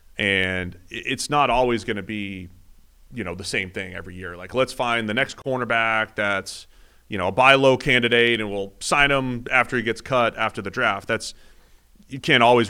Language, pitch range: English, 95-115 Hz